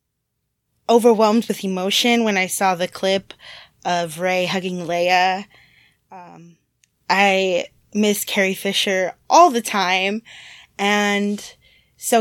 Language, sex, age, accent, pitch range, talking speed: English, female, 20-39, American, 180-220 Hz, 110 wpm